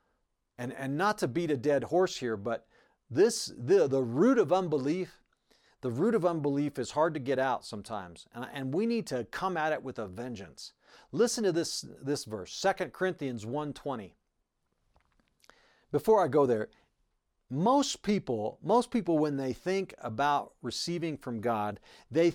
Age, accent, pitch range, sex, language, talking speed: 40-59, American, 135-200 Hz, male, English, 160 wpm